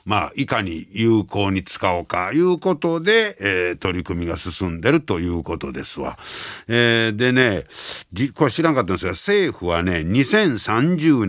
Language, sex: Japanese, male